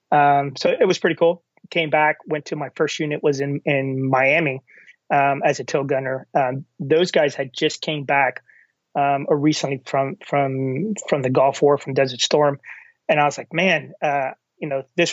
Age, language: 30-49, English